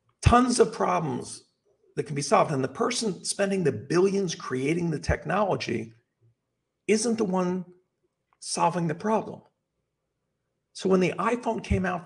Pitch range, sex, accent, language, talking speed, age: 140-190 Hz, male, American, English, 140 wpm, 50-69